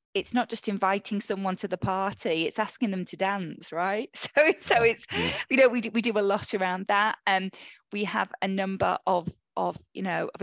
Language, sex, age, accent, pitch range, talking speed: English, female, 20-39, British, 170-195 Hz, 220 wpm